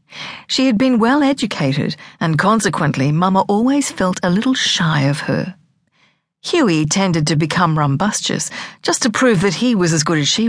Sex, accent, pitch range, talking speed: female, Australian, 160-220 Hz, 165 wpm